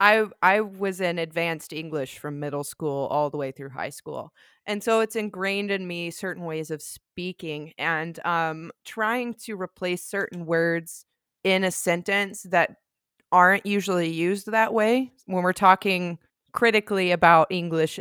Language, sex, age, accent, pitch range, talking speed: English, female, 20-39, American, 170-210 Hz, 155 wpm